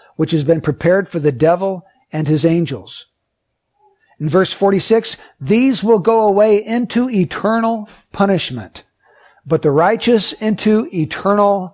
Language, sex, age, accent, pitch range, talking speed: English, male, 60-79, American, 165-215 Hz, 130 wpm